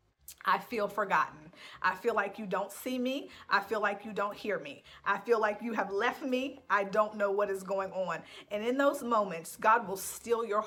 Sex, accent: female, American